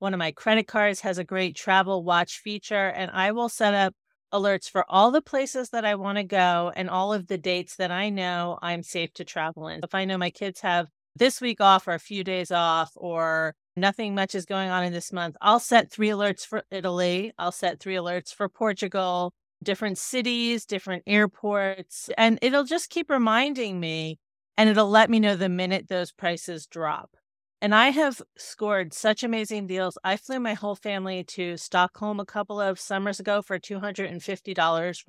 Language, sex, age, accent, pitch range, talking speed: English, female, 30-49, American, 180-210 Hz, 195 wpm